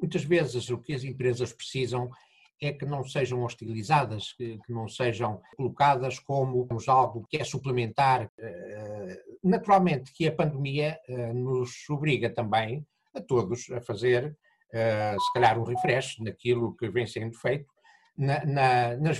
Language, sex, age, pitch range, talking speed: Portuguese, male, 50-69, 120-150 Hz, 130 wpm